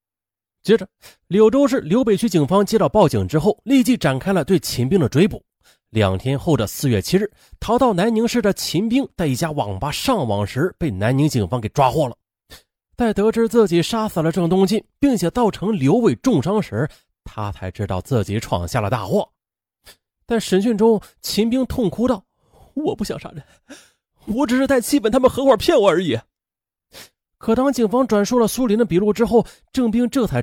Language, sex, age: Chinese, male, 30-49